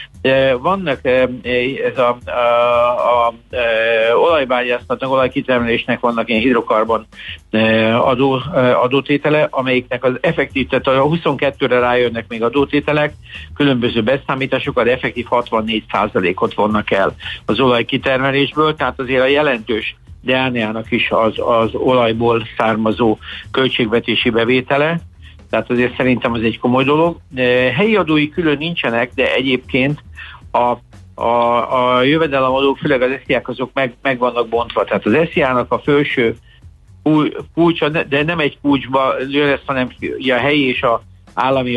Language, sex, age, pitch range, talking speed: Hungarian, male, 60-79, 115-135 Hz, 125 wpm